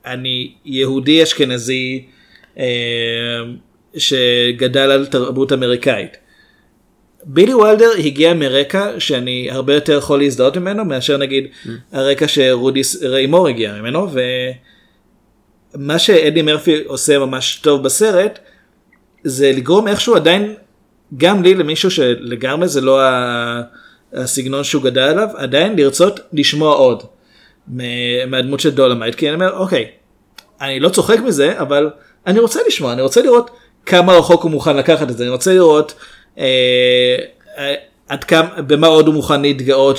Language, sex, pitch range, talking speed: Hebrew, male, 130-165 Hz, 130 wpm